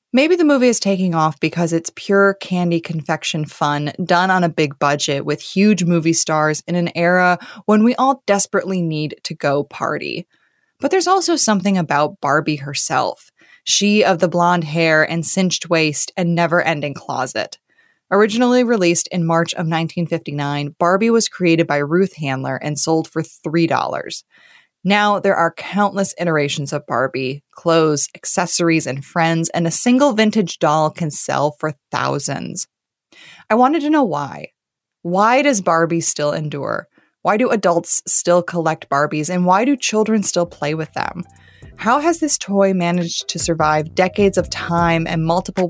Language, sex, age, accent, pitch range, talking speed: English, female, 20-39, American, 155-195 Hz, 160 wpm